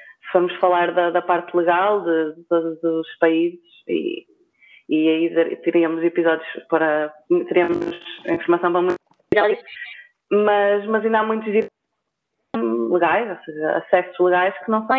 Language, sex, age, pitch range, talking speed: Portuguese, female, 20-39, 170-210 Hz, 130 wpm